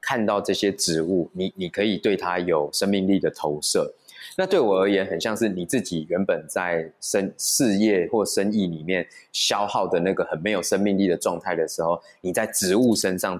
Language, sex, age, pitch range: Chinese, male, 20-39, 90-105 Hz